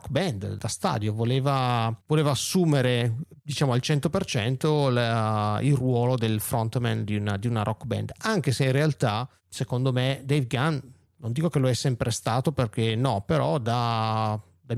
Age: 30-49